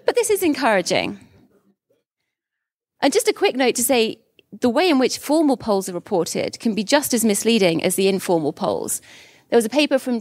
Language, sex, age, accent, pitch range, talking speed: English, female, 30-49, British, 180-230 Hz, 195 wpm